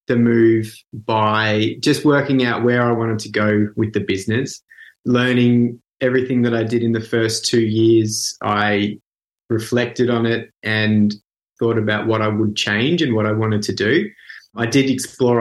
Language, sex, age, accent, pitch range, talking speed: English, male, 20-39, Australian, 110-125 Hz, 170 wpm